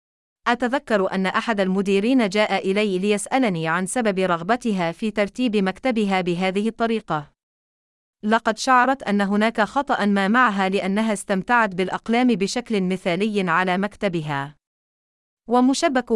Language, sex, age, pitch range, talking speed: Arabic, female, 30-49, 190-240 Hz, 110 wpm